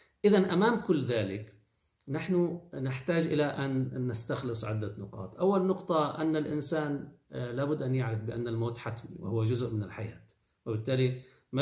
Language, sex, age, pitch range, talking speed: Arabic, male, 40-59, 110-145 Hz, 140 wpm